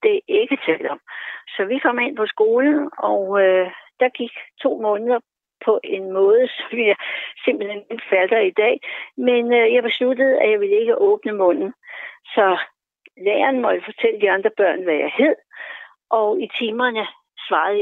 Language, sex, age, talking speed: Danish, female, 60-79, 170 wpm